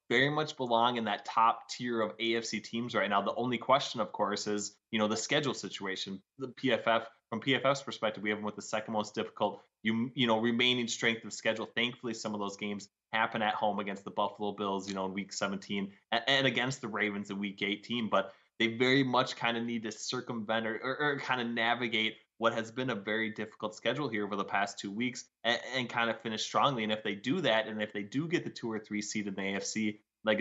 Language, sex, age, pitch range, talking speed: English, male, 20-39, 100-120 Hz, 235 wpm